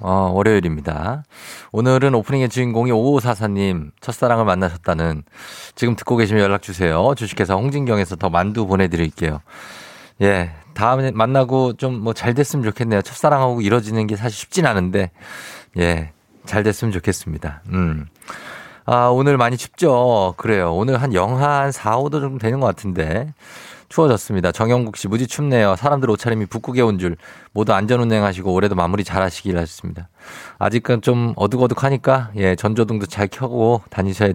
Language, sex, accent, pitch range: Korean, male, native, 95-125 Hz